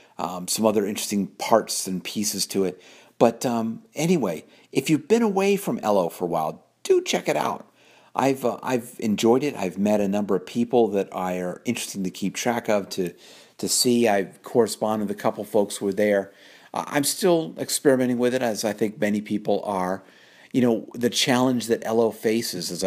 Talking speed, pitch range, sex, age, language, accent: 200 wpm, 90-120 Hz, male, 50-69, English, American